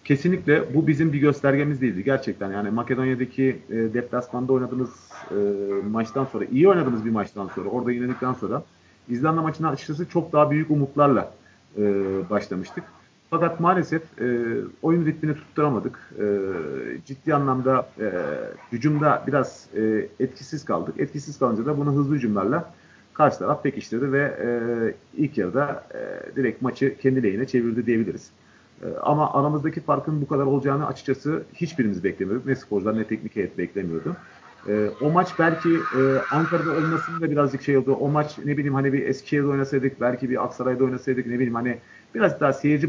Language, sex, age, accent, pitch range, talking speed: Turkish, male, 40-59, native, 120-150 Hz, 155 wpm